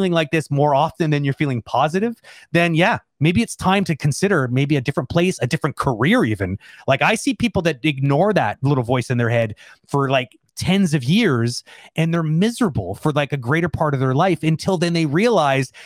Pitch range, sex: 135-185 Hz, male